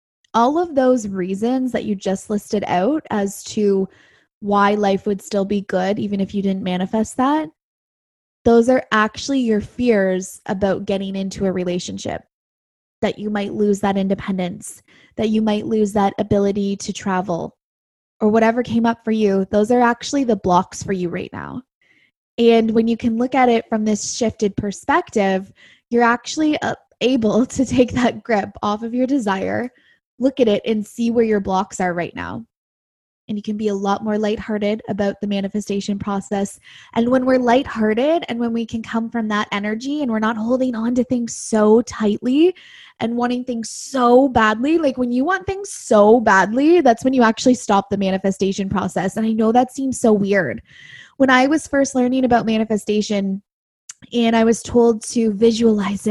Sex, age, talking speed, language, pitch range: female, 20-39, 180 wpm, English, 200-245 Hz